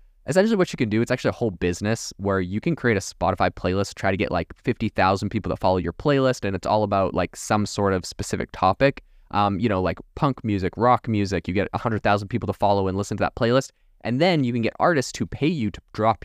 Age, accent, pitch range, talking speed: 20-39, American, 95-115 Hz, 250 wpm